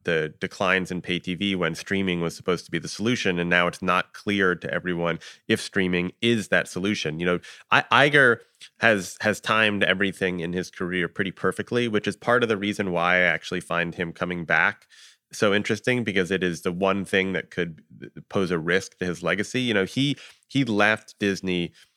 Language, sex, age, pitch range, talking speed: English, male, 30-49, 90-110 Hz, 195 wpm